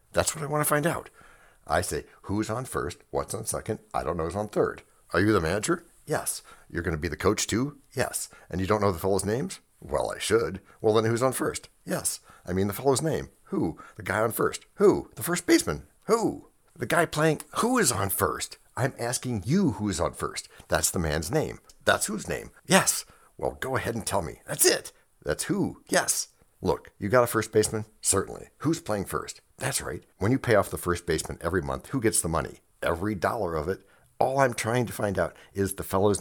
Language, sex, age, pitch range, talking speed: English, male, 60-79, 95-145 Hz, 225 wpm